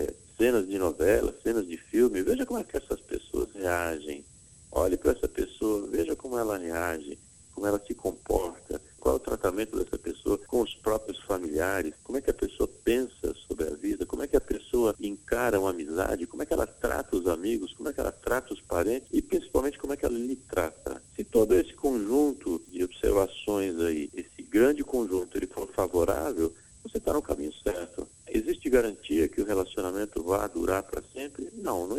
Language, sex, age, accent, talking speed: Portuguese, male, 50-69, Brazilian, 190 wpm